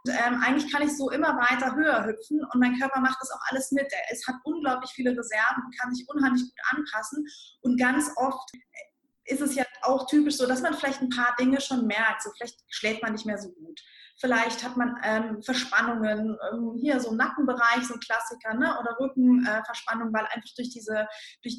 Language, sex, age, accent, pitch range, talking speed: German, female, 20-39, German, 230-275 Hz, 205 wpm